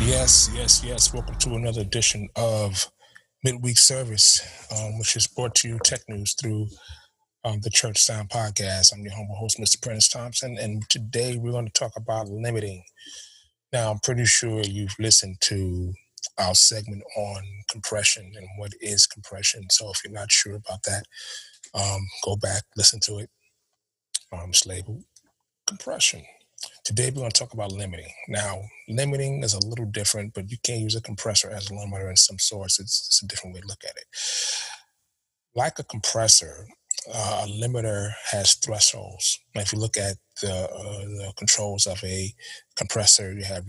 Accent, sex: American, male